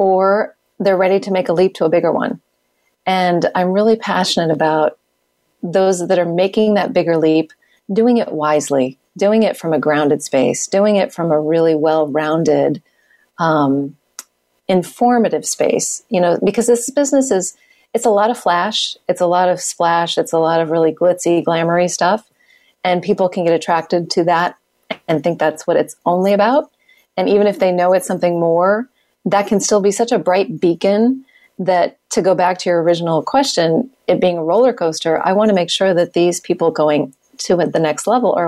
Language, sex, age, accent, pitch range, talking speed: English, female, 40-59, American, 165-210 Hz, 190 wpm